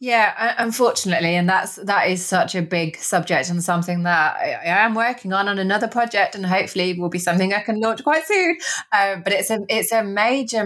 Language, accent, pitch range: English, British, 155-210 Hz